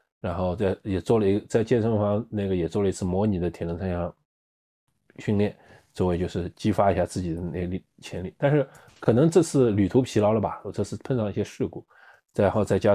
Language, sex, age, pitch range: Chinese, male, 20-39, 90-120 Hz